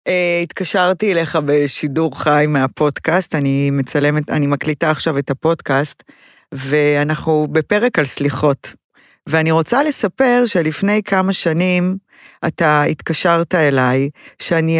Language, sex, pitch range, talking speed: Hebrew, female, 150-185 Hz, 105 wpm